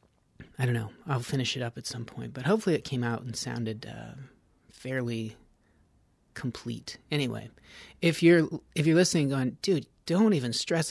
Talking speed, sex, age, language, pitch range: 175 wpm, male, 30-49, English, 115-155 Hz